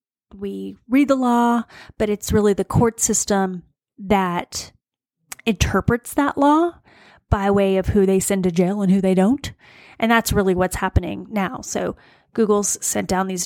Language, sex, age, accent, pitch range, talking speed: English, female, 30-49, American, 195-235 Hz, 165 wpm